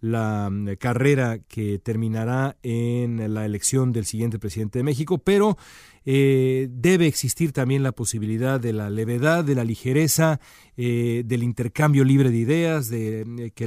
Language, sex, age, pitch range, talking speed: Spanish, male, 40-59, 115-150 Hz, 150 wpm